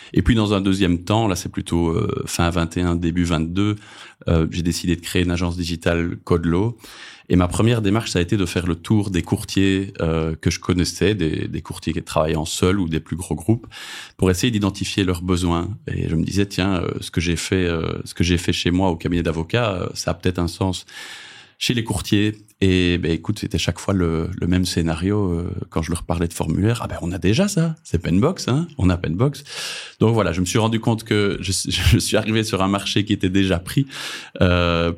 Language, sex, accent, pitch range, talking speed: French, male, French, 85-100 Hz, 230 wpm